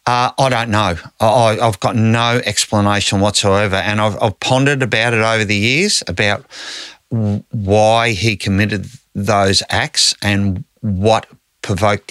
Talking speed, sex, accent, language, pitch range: 140 wpm, male, Australian, English, 95-110 Hz